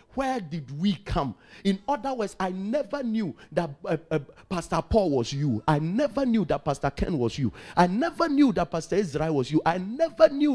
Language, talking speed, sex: English, 205 wpm, male